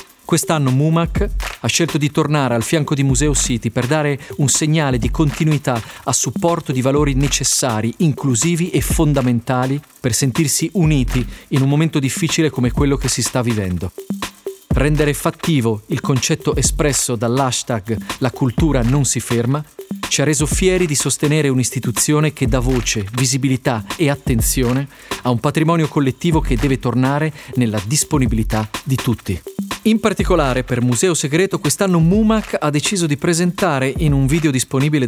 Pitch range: 130-170 Hz